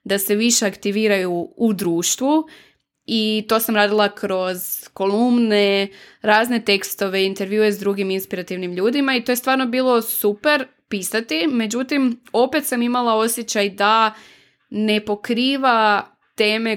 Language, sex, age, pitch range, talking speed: Croatian, female, 20-39, 190-225 Hz, 125 wpm